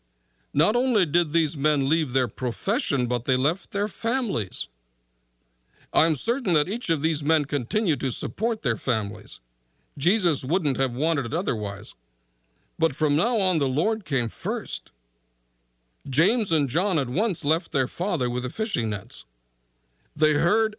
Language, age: English, 60-79